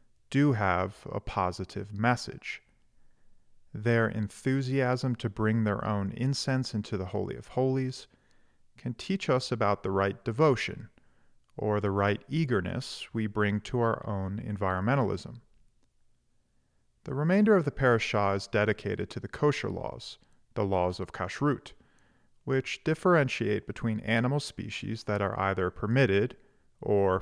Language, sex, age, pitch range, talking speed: English, male, 40-59, 100-130 Hz, 130 wpm